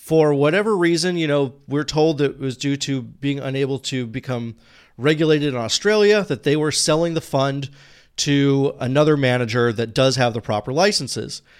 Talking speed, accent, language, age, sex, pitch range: 170 wpm, American, English, 40-59, male, 120-160 Hz